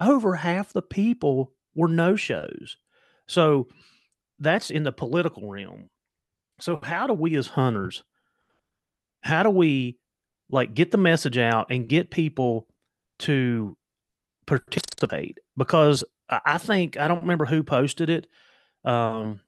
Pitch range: 120-155 Hz